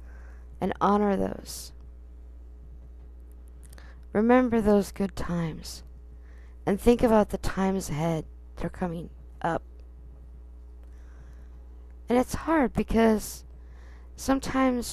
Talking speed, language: 85 wpm, English